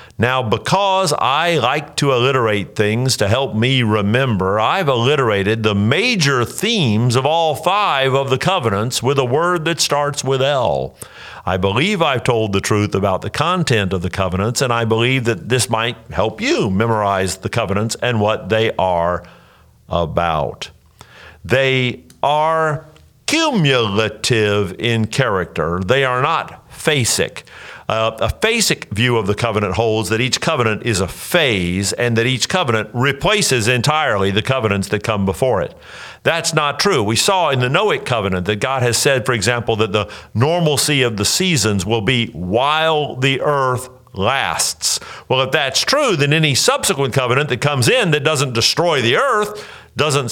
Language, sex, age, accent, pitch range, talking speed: English, male, 50-69, American, 105-140 Hz, 160 wpm